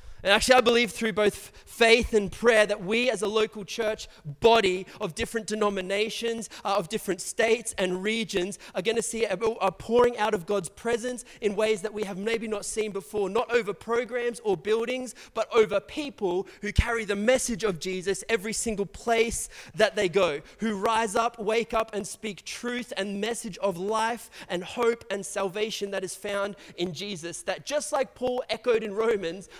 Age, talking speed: 20-39, 185 wpm